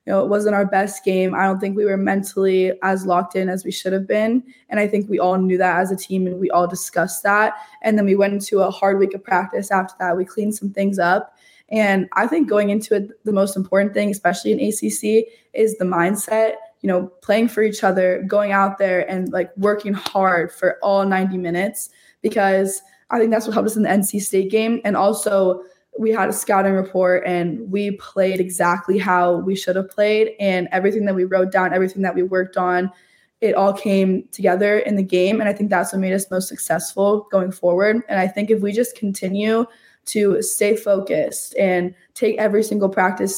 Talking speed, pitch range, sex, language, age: 220 wpm, 185-205 Hz, female, English, 20-39